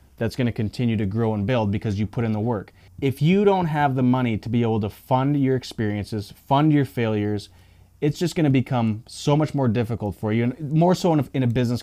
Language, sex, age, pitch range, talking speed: English, male, 30-49, 100-130 Hz, 245 wpm